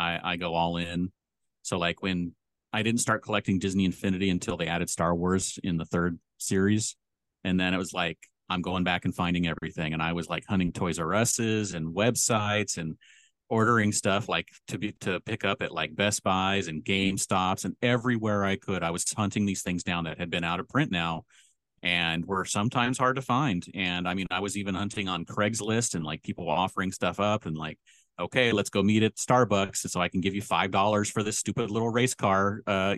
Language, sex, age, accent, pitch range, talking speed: English, male, 30-49, American, 90-105 Hz, 215 wpm